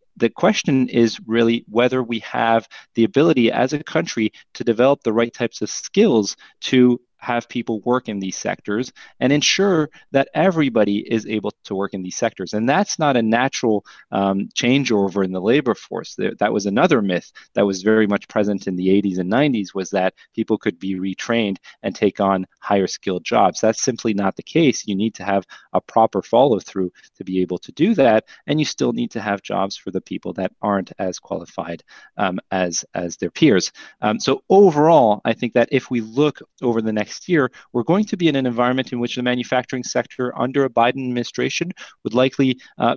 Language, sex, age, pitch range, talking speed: English, male, 30-49, 100-125 Hz, 200 wpm